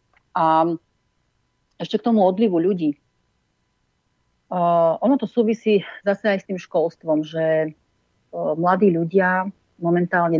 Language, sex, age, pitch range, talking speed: Slovak, female, 40-59, 160-190 Hz, 115 wpm